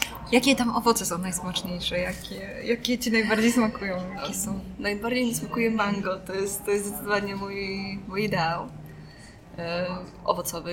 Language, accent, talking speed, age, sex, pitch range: Polish, native, 140 wpm, 20-39, female, 180-215 Hz